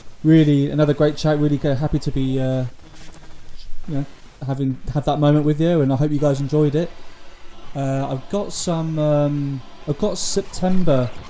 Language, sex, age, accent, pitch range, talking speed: English, male, 20-39, British, 125-145 Hz, 170 wpm